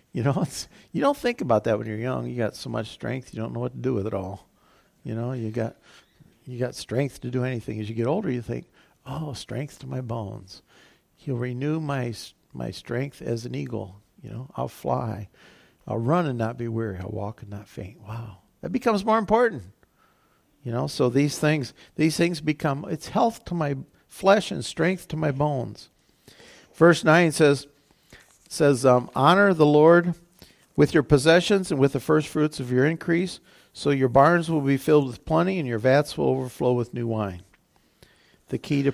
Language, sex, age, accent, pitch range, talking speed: English, male, 50-69, American, 115-155 Hz, 200 wpm